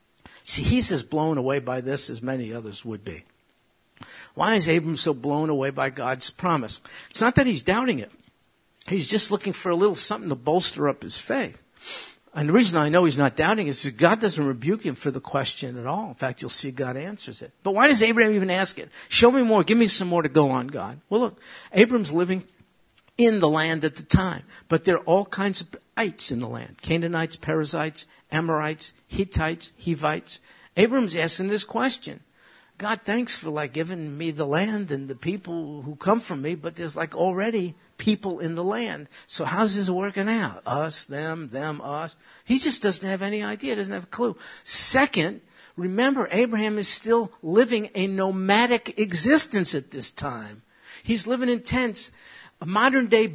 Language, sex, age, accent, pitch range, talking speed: English, male, 60-79, American, 155-220 Hz, 195 wpm